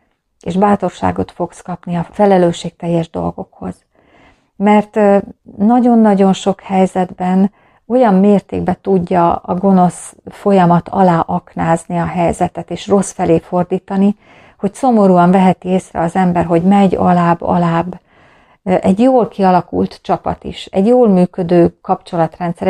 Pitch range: 165-195 Hz